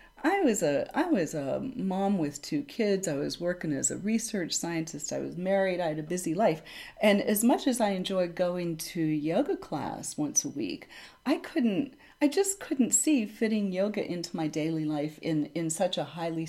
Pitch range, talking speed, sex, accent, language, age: 160-215 Hz, 200 wpm, female, American, English, 40-59